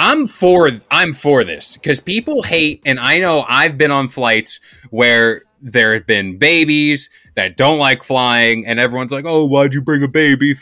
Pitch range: 125-160 Hz